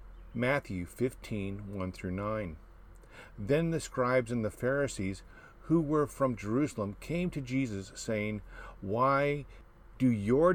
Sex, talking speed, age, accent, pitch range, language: male, 125 wpm, 50-69, American, 100-140 Hz, English